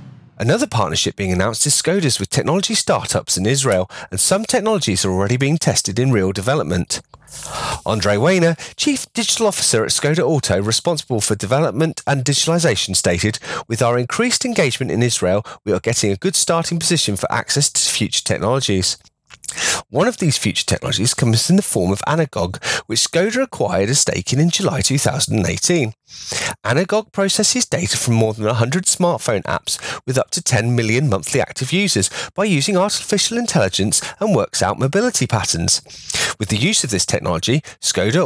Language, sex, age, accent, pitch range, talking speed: English, male, 30-49, British, 105-175 Hz, 165 wpm